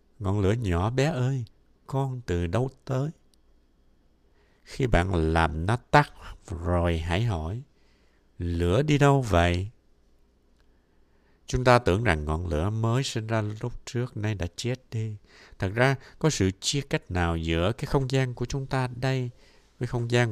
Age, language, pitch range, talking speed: 60-79, Vietnamese, 80-120 Hz, 160 wpm